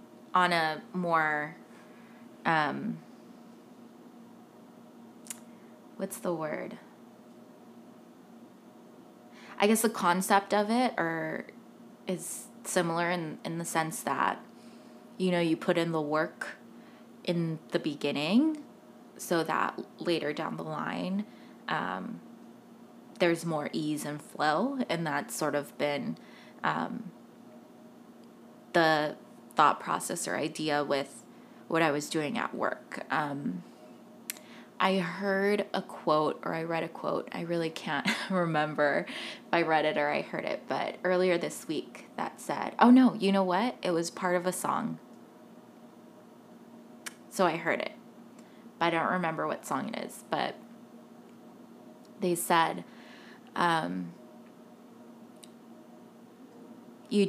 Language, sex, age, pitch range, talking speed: English, female, 20-39, 155-195 Hz, 125 wpm